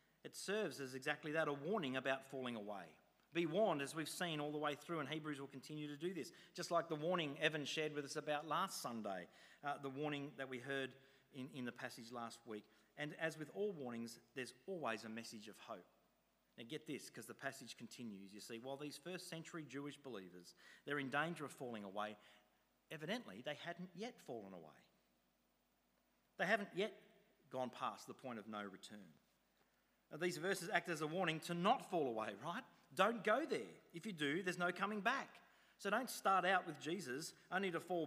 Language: English